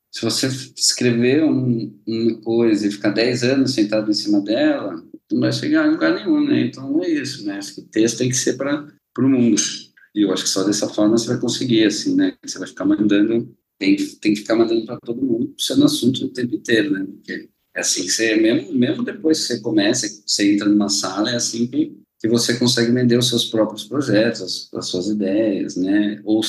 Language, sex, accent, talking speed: Portuguese, male, Brazilian, 225 wpm